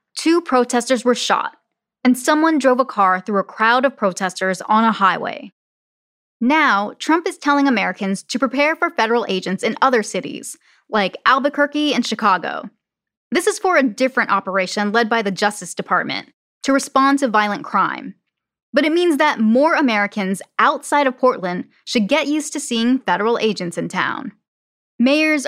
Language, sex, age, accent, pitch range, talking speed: English, female, 10-29, American, 210-285 Hz, 160 wpm